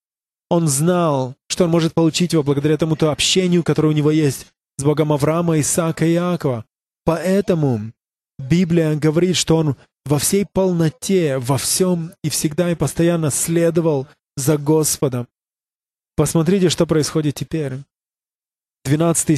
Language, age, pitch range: English, 20-39, 140-170 Hz